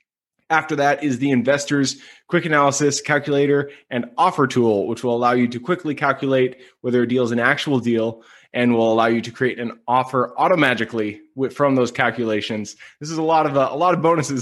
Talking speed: 195 wpm